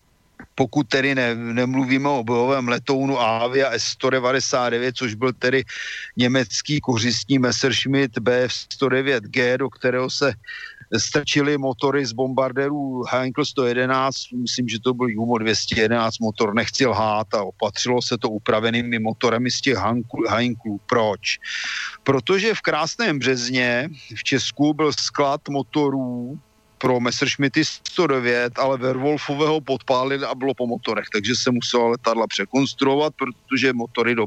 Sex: male